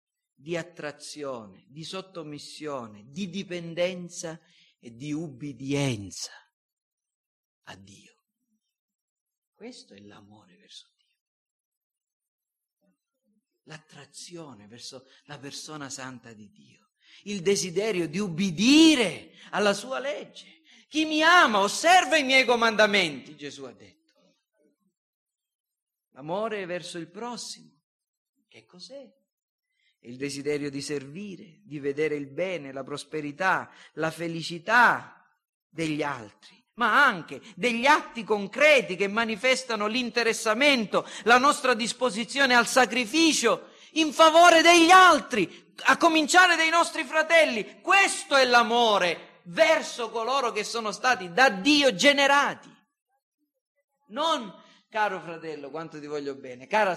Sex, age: male, 50-69